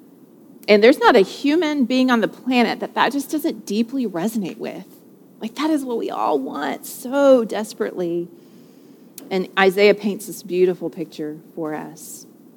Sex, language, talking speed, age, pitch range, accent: female, English, 160 wpm, 30-49, 215-295 Hz, American